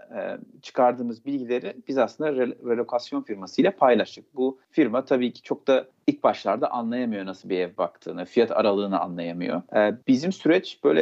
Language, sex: Turkish, male